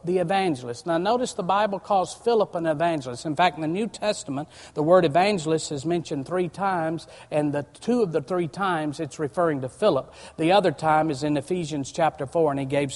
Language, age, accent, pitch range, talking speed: English, 50-69, American, 150-205 Hz, 210 wpm